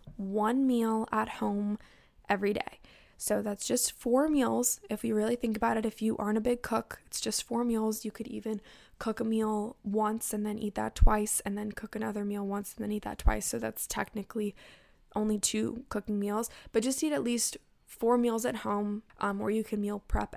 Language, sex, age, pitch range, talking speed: English, female, 10-29, 205-230 Hz, 210 wpm